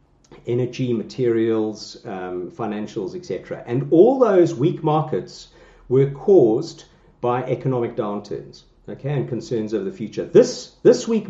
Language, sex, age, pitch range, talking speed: English, male, 50-69, 120-165 Hz, 125 wpm